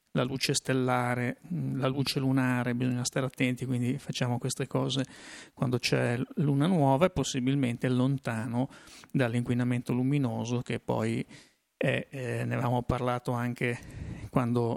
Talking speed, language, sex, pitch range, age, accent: 120 wpm, Italian, male, 125-140 Hz, 30-49, native